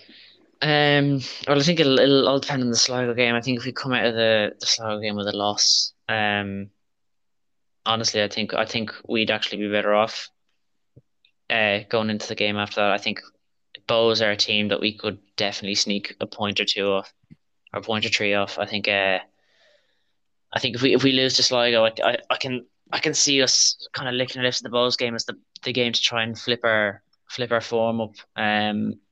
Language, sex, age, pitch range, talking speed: English, male, 20-39, 100-115 Hz, 225 wpm